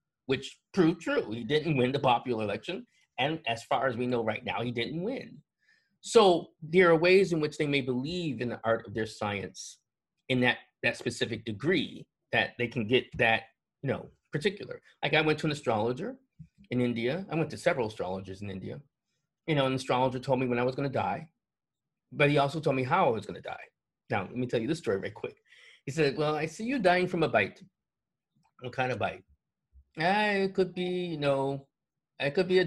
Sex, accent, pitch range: male, American, 125-170 Hz